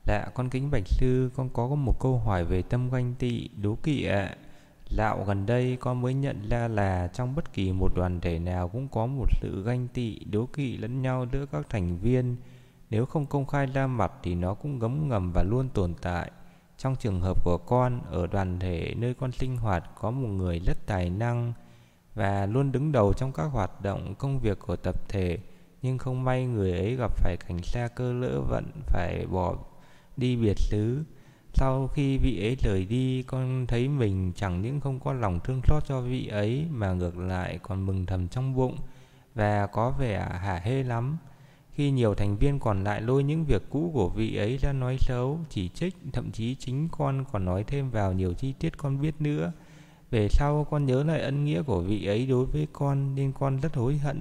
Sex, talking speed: male, 215 wpm